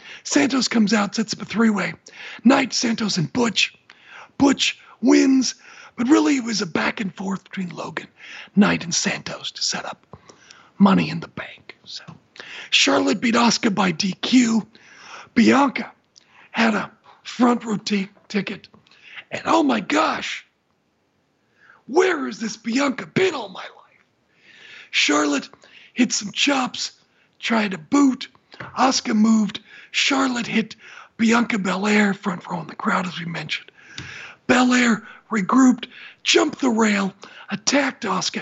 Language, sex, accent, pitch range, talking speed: English, male, American, 200-255 Hz, 135 wpm